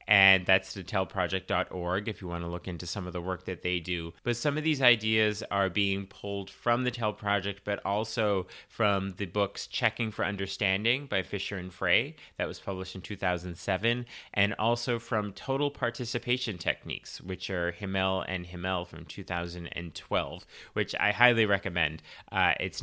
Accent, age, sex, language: American, 30-49, male, English